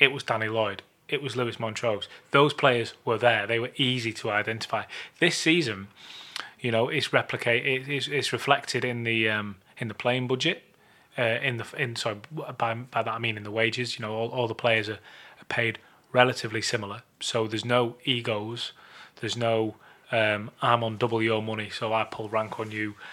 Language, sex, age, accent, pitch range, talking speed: English, male, 20-39, British, 110-135 Hz, 190 wpm